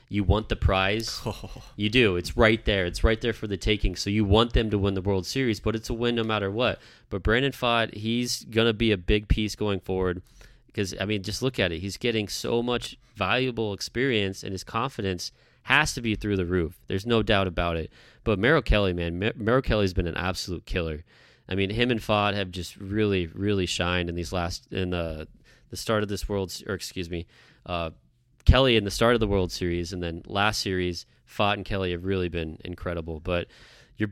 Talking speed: 225 wpm